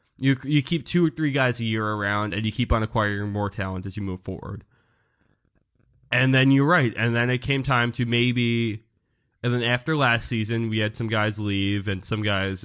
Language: English